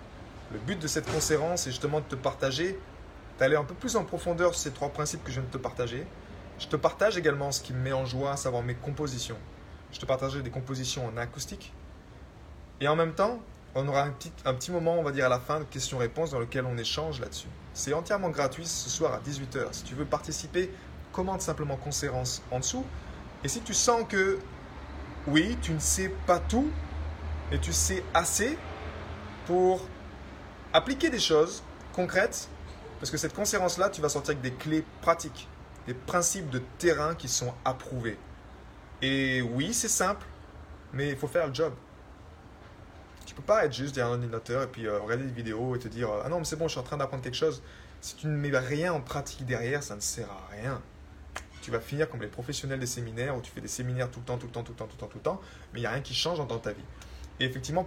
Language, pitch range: French, 105-155 Hz